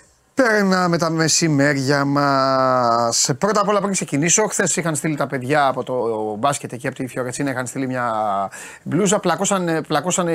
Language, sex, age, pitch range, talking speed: Greek, male, 30-49, 130-160 Hz, 155 wpm